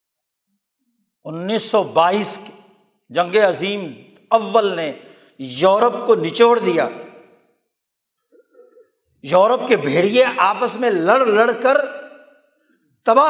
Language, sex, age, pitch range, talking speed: Urdu, male, 60-79, 195-265 Hz, 80 wpm